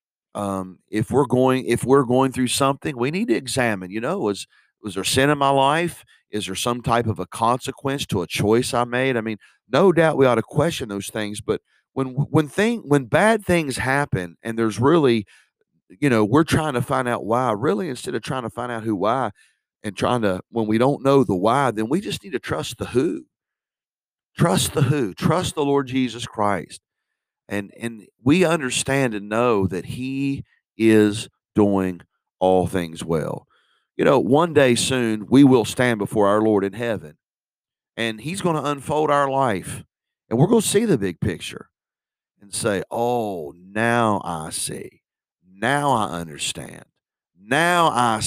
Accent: American